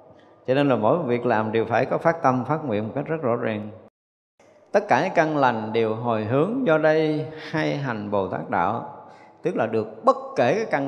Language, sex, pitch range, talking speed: Vietnamese, male, 105-145 Hz, 220 wpm